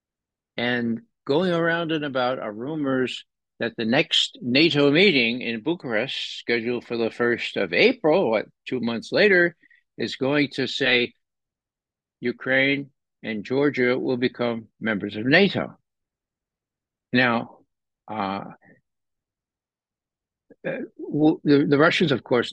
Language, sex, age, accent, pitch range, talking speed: English, male, 60-79, American, 120-155 Hz, 115 wpm